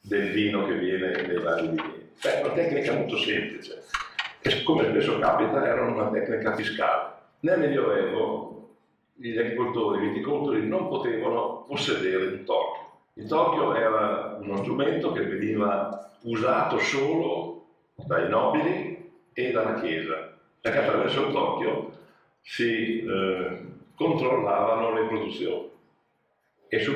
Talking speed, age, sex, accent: 125 wpm, 50-69, male, Italian